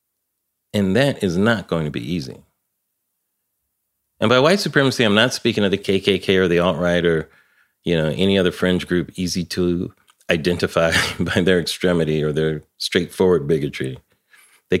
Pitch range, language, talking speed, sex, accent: 90-130 Hz, English, 160 wpm, male, American